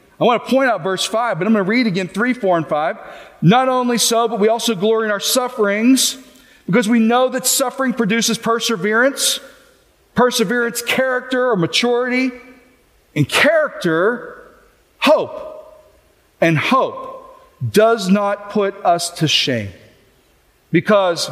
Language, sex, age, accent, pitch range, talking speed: English, male, 40-59, American, 180-250 Hz, 140 wpm